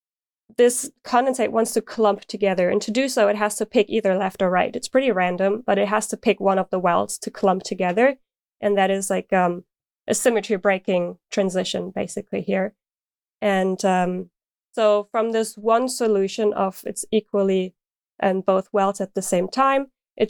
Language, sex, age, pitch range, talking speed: English, female, 20-39, 190-220 Hz, 185 wpm